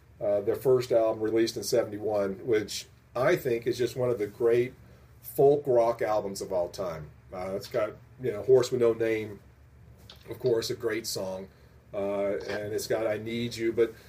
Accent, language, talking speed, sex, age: American, English, 185 wpm, male, 40-59